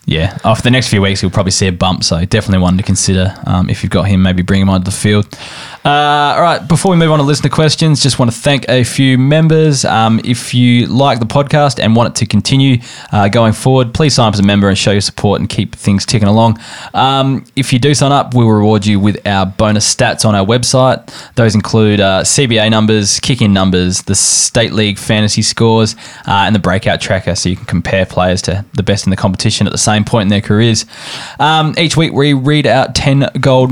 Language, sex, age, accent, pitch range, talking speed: English, male, 20-39, Australian, 100-135 Hz, 240 wpm